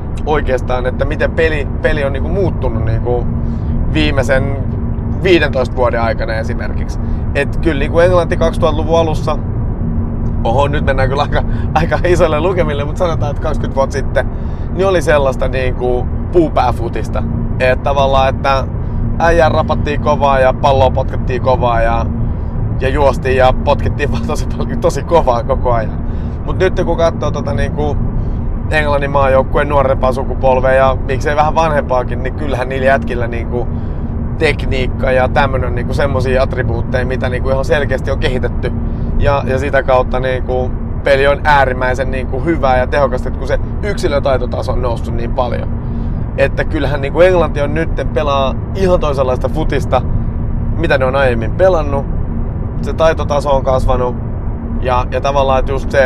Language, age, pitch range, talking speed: Finnish, 30-49, 110-130 Hz, 145 wpm